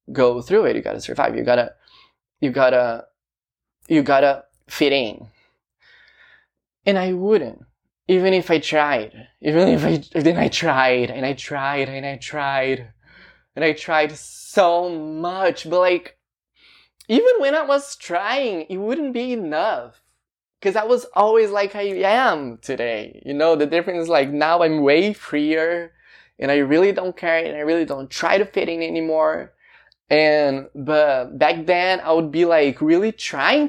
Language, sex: English, male